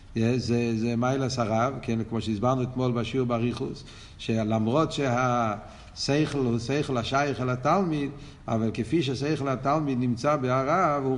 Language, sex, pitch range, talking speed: Hebrew, male, 120-160 Hz, 120 wpm